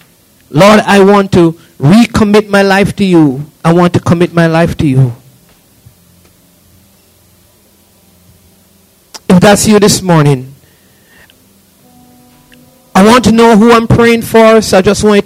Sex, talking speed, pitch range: male, 140 wpm, 130-205 Hz